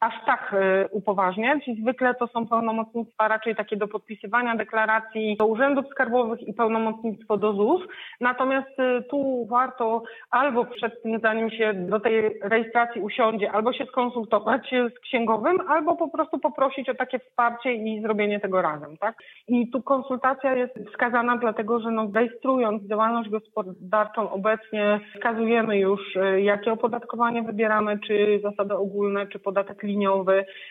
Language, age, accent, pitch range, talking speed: Polish, 30-49, native, 205-235 Hz, 140 wpm